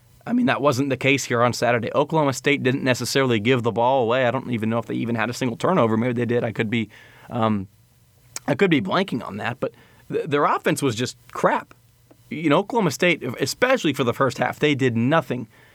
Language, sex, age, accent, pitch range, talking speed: English, male, 30-49, American, 120-140 Hz, 230 wpm